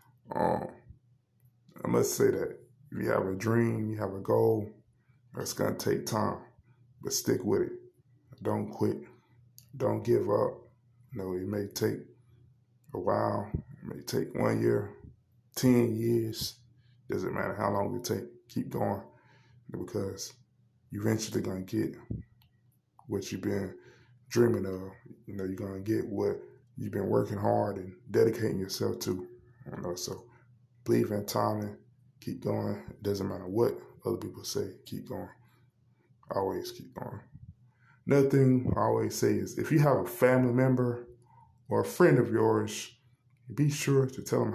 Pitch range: 105-125 Hz